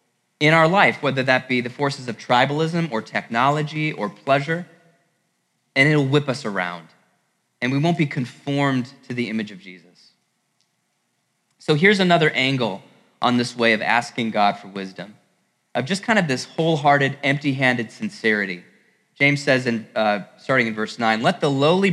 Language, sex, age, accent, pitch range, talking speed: English, male, 20-39, American, 115-145 Hz, 160 wpm